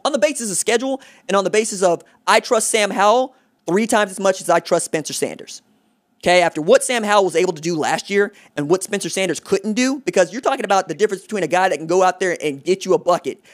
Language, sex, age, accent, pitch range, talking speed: English, male, 20-39, American, 170-225 Hz, 260 wpm